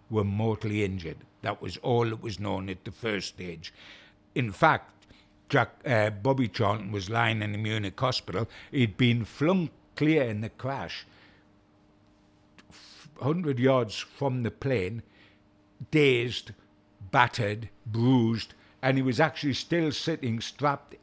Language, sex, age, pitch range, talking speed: English, male, 60-79, 105-140 Hz, 130 wpm